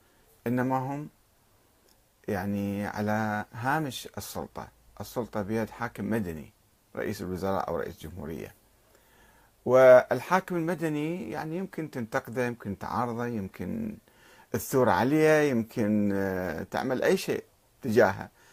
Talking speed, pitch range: 95 wpm, 105-140 Hz